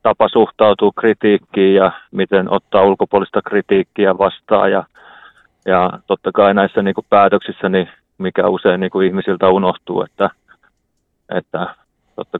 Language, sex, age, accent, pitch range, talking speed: Finnish, male, 30-49, native, 90-100 Hz, 105 wpm